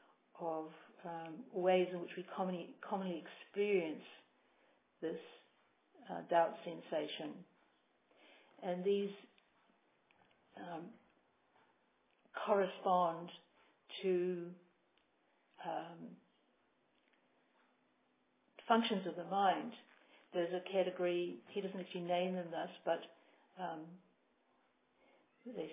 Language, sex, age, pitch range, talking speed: English, female, 60-79, 170-195 Hz, 80 wpm